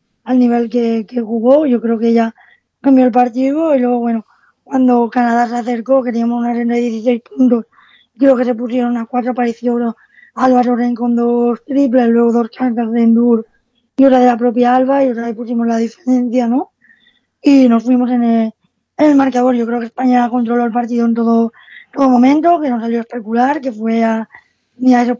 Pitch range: 235-255 Hz